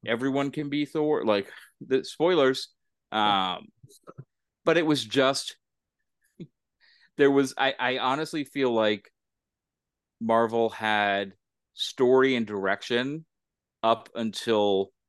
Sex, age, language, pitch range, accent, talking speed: male, 30-49, English, 100-130 Hz, American, 105 wpm